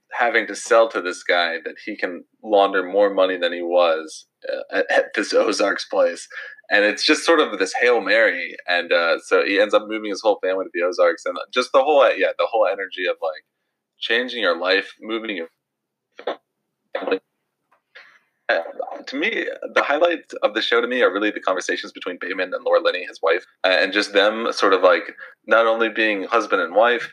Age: 30-49